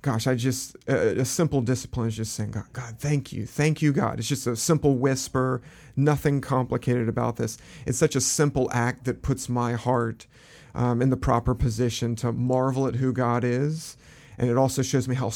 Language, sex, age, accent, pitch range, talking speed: English, male, 40-59, American, 120-140 Hz, 200 wpm